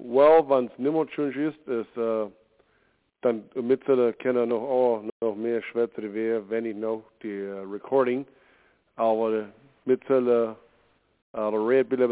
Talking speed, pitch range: 80 wpm, 110-130 Hz